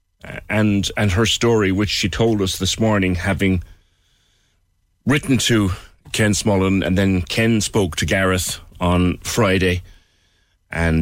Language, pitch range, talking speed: English, 90-115 Hz, 130 wpm